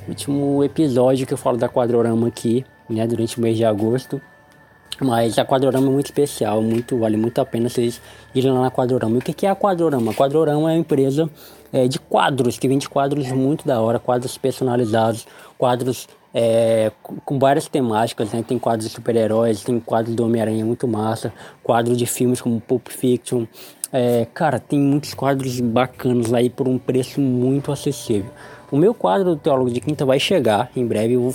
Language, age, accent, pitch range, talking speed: Portuguese, 20-39, Brazilian, 115-140 Hz, 190 wpm